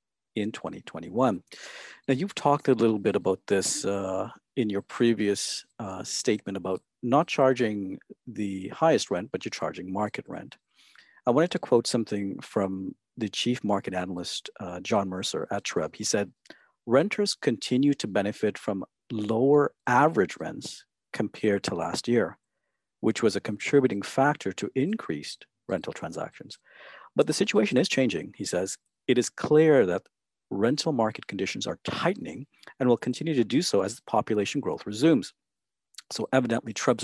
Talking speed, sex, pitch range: 155 wpm, male, 95-120 Hz